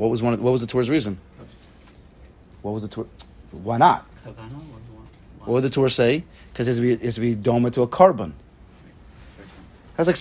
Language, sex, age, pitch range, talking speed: English, male, 30-49, 115-155 Hz, 200 wpm